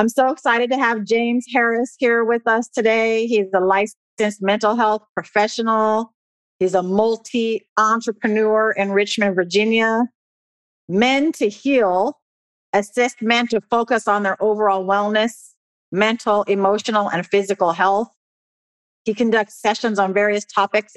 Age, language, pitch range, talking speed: 40-59, English, 195-225 Hz, 130 wpm